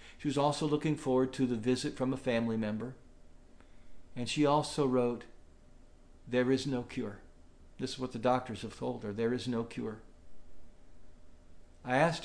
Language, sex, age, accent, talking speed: English, male, 50-69, American, 165 wpm